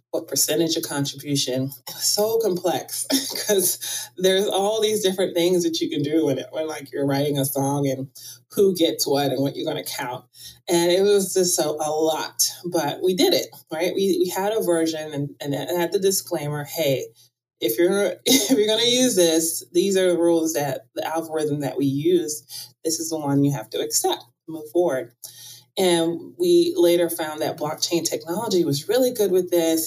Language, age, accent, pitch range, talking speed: English, 30-49, American, 145-195 Hz, 200 wpm